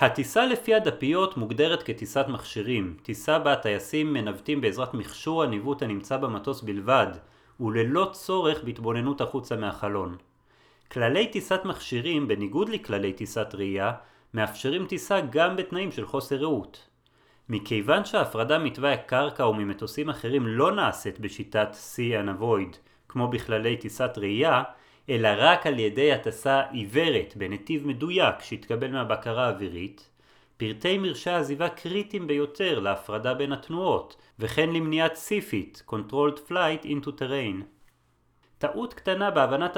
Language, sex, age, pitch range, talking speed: Hebrew, male, 30-49, 110-155 Hz, 115 wpm